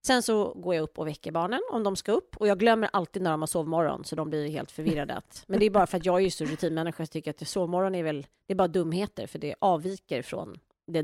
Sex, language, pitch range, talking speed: female, English, 155-210 Hz, 275 wpm